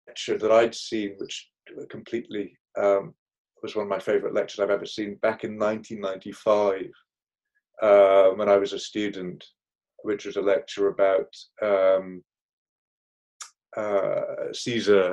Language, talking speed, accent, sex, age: English, 125 wpm, British, male, 30-49